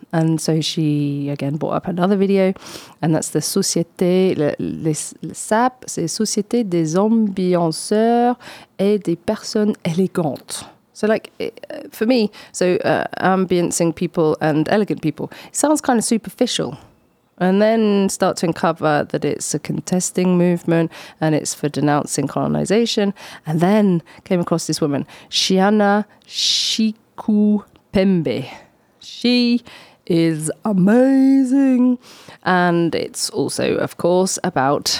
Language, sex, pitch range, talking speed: French, female, 155-210 Hz, 125 wpm